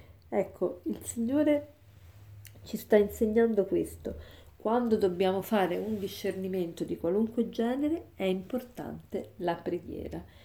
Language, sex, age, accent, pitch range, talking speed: Italian, female, 40-59, native, 180-235 Hz, 110 wpm